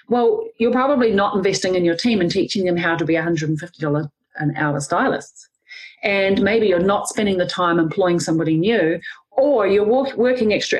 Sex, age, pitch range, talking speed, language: female, 40-59, 170-225 Hz, 180 wpm, English